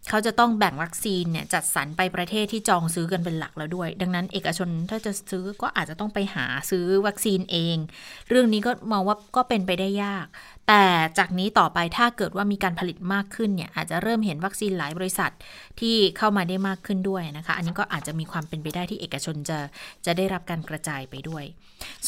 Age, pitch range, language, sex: 20-39, 175-220 Hz, Thai, female